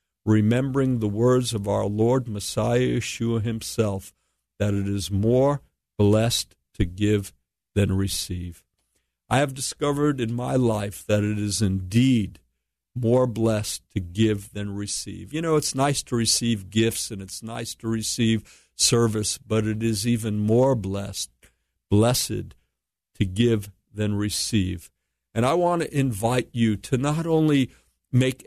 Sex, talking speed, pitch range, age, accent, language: male, 145 wpm, 105-130 Hz, 50-69, American, English